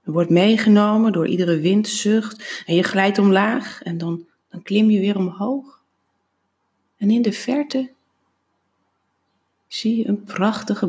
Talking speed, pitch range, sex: 130 wpm, 195-260 Hz, female